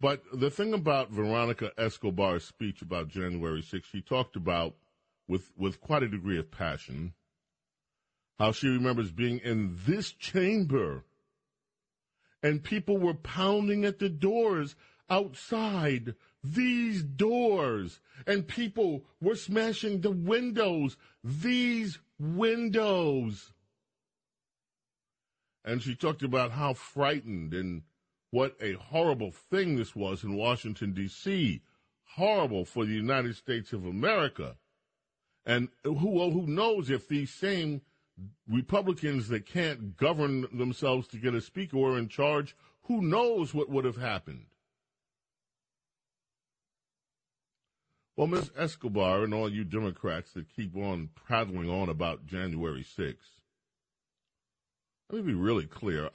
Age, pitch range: 40-59, 100-165 Hz